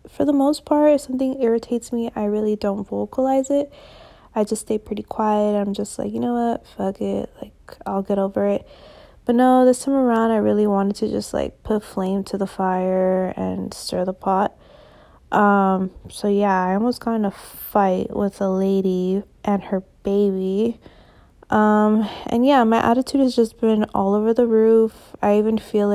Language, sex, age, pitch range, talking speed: English, female, 20-39, 200-250 Hz, 185 wpm